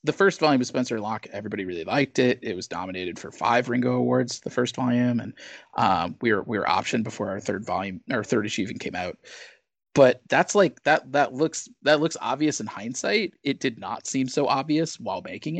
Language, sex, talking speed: English, male, 210 wpm